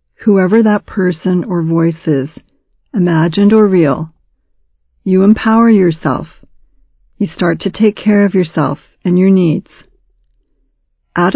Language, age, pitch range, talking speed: English, 40-59, 160-210 Hz, 120 wpm